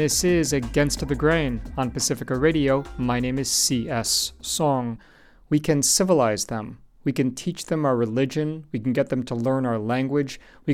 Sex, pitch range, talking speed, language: male, 120-150 Hz, 180 wpm, English